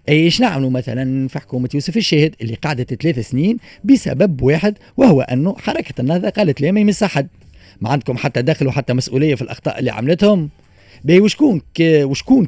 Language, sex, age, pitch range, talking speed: Arabic, male, 30-49, 135-195 Hz, 175 wpm